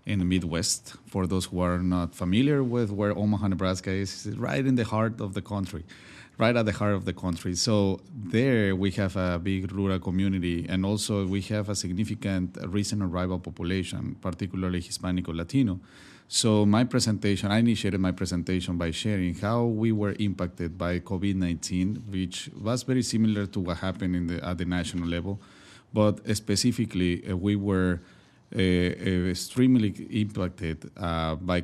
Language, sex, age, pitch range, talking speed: English, male, 30-49, 90-105 Hz, 165 wpm